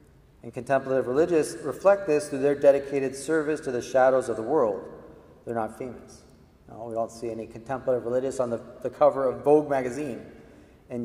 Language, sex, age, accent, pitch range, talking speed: English, male, 40-59, American, 115-135 Hz, 180 wpm